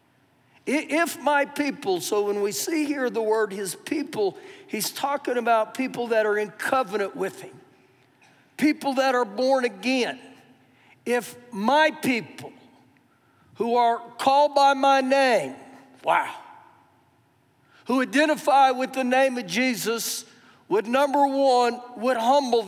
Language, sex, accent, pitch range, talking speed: English, male, American, 230-275 Hz, 130 wpm